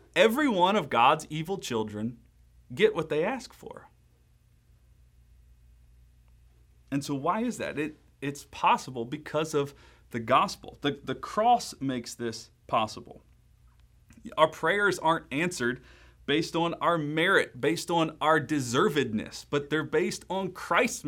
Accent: American